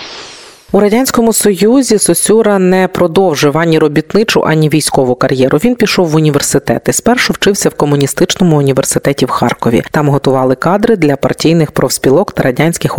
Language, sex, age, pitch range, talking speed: Ukrainian, female, 30-49, 145-190 Hz, 140 wpm